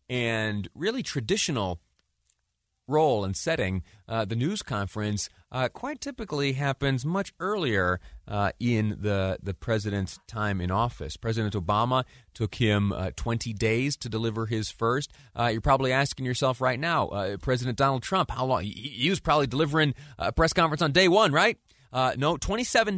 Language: English